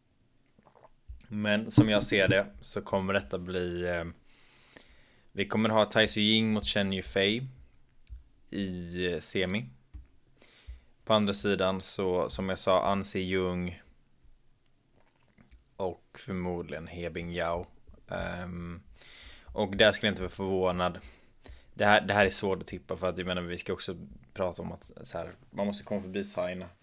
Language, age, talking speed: Swedish, 20-39, 155 wpm